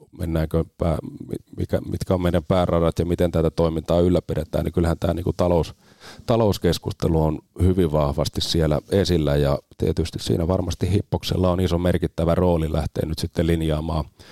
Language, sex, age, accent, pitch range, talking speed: Finnish, male, 30-49, native, 80-95 Hz, 140 wpm